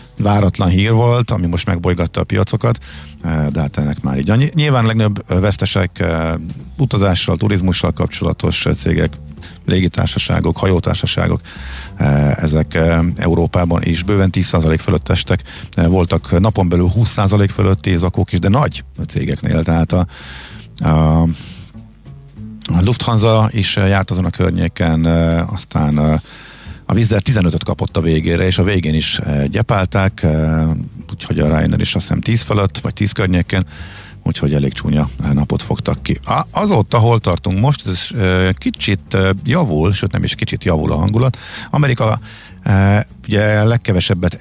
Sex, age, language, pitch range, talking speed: male, 50-69, Hungarian, 80-105 Hz, 130 wpm